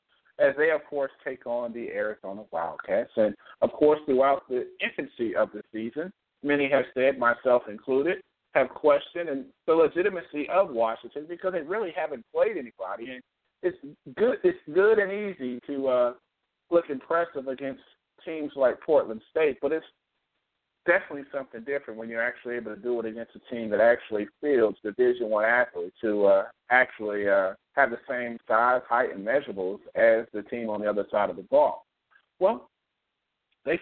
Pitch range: 120-185 Hz